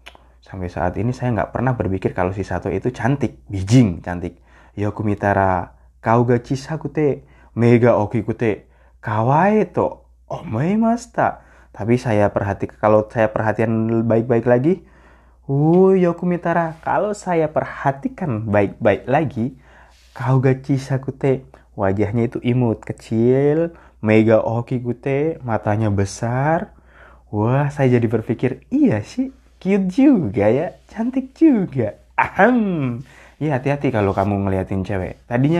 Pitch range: 100-145 Hz